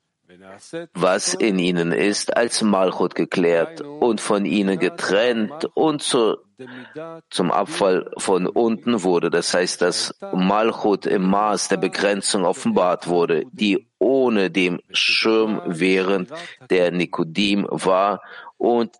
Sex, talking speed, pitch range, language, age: male, 115 wpm, 90-120 Hz, German, 50-69